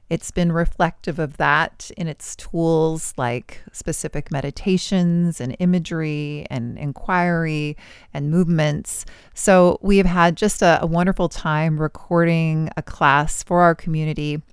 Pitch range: 155-185 Hz